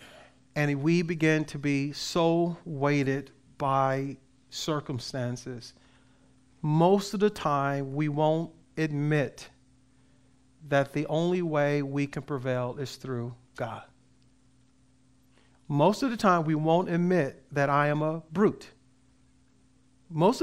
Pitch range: 130-185 Hz